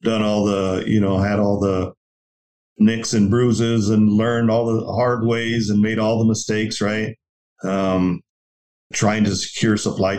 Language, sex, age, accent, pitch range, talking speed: English, male, 40-59, American, 100-115 Hz, 165 wpm